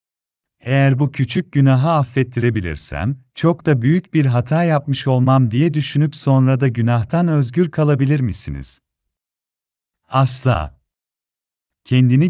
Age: 40-59